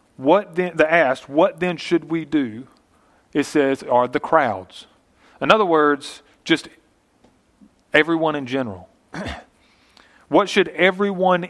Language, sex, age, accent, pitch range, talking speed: English, male, 40-59, American, 120-160 Hz, 120 wpm